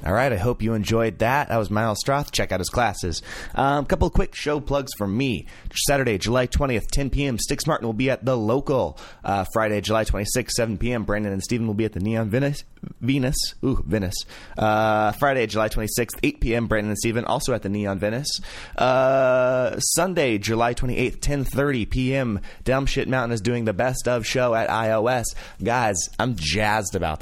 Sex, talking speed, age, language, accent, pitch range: male, 185 wpm, 20-39, English, American, 95-125 Hz